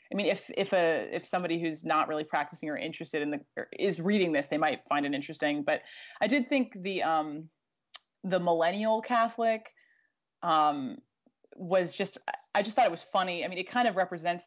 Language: English